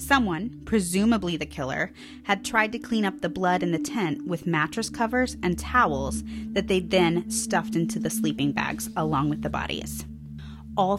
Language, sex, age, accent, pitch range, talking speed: English, female, 30-49, American, 145-195 Hz, 175 wpm